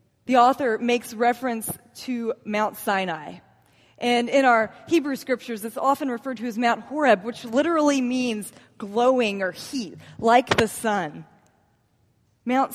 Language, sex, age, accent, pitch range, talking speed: English, female, 20-39, American, 160-245 Hz, 135 wpm